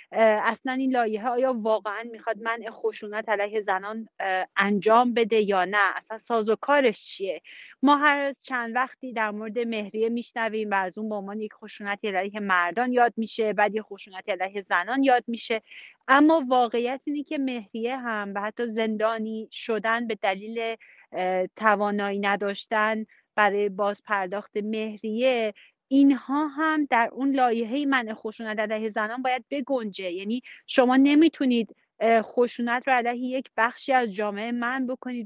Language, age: Persian, 30-49